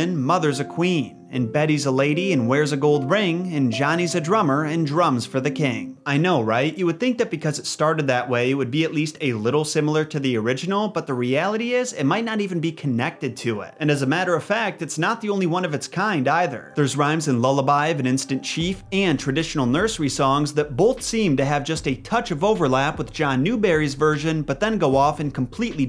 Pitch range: 135-170 Hz